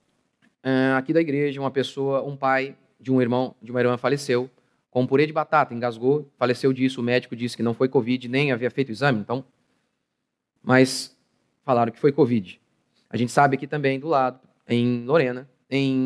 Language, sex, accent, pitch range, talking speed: Portuguese, male, Brazilian, 125-165 Hz, 185 wpm